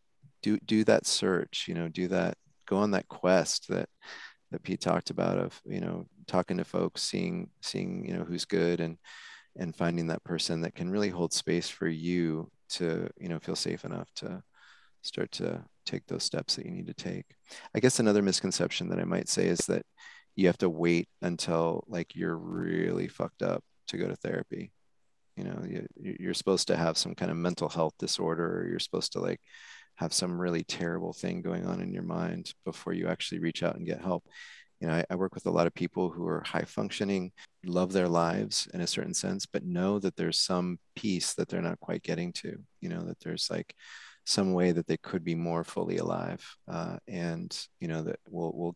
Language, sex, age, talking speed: English, male, 30-49, 210 wpm